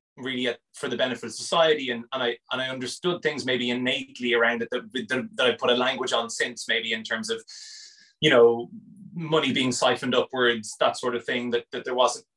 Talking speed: 220 wpm